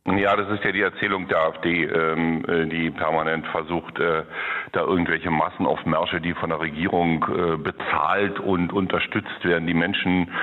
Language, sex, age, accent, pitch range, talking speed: German, male, 50-69, German, 85-100 Hz, 150 wpm